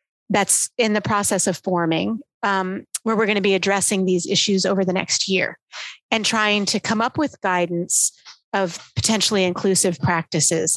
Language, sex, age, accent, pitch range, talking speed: English, female, 30-49, American, 190-230 Hz, 165 wpm